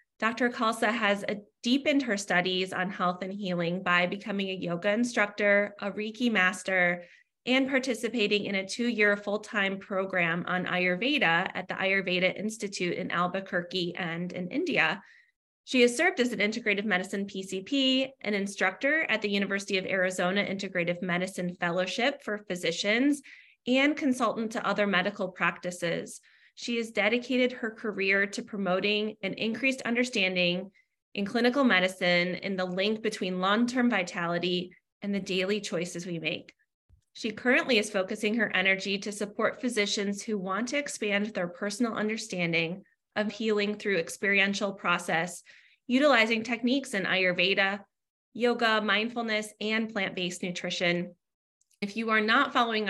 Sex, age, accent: female, 20-39, American